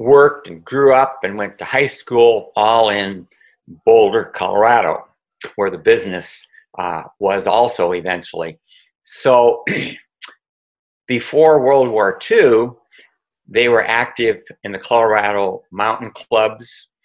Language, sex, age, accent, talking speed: English, male, 50-69, American, 115 wpm